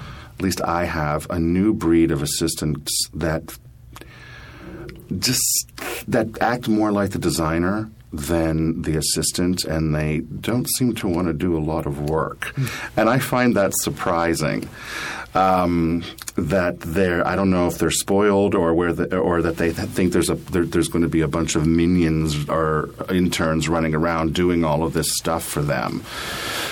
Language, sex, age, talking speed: English, male, 40-59, 165 wpm